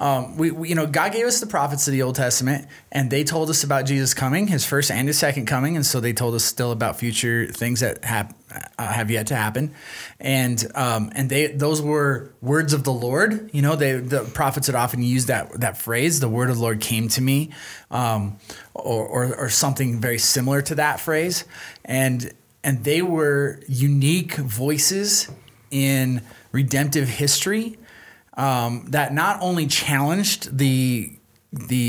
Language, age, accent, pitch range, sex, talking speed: English, 20-39, American, 125-155 Hz, male, 185 wpm